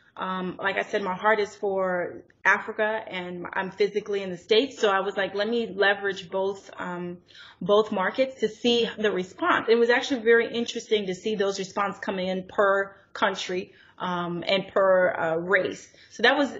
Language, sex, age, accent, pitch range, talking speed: English, female, 20-39, American, 190-225 Hz, 185 wpm